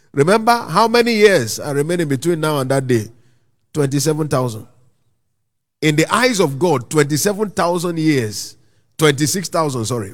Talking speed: 125 wpm